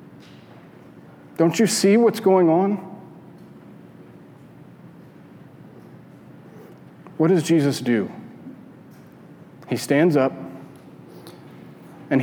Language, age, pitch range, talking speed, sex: English, 40-59, 110-160 Hz, 70 wpm, male